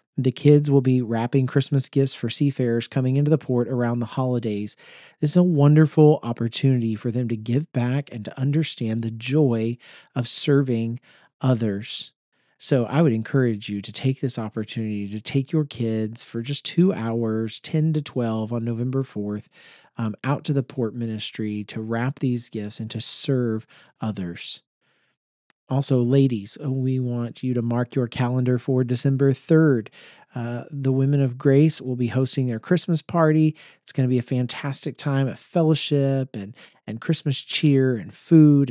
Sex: male